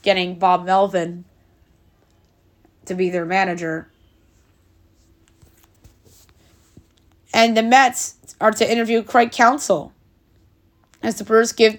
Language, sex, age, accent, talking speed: English, female, 20-39, American, 95 wpm